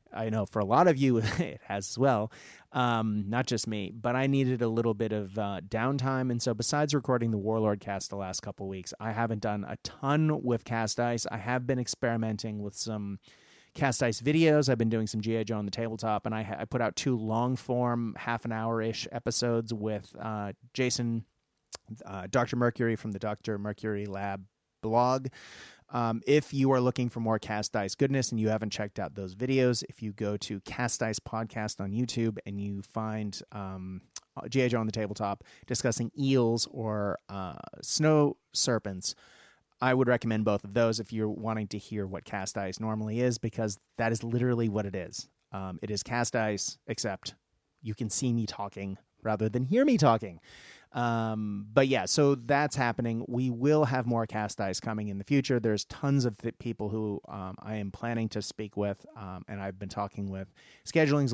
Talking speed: 195 wpm